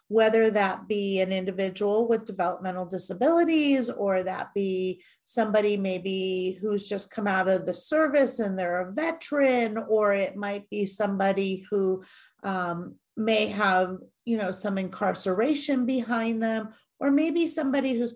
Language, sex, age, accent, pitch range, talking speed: English, female, 40-59, American, 190-225 Hz, 140 wpm